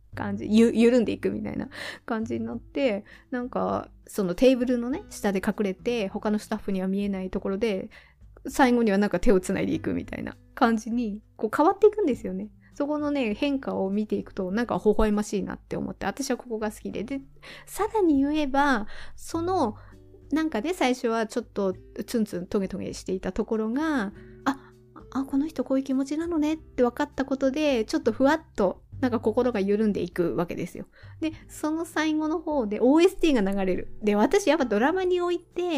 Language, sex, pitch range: Japanese, female, 210-285 Hz